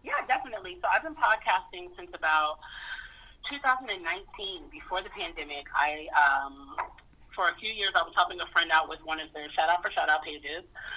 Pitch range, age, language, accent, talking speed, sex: 170-255 Hz, 30-49, English, American, 185 wpm, female